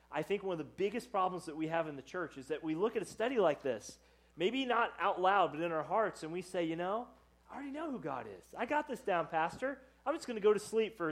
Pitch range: 140-180 Hz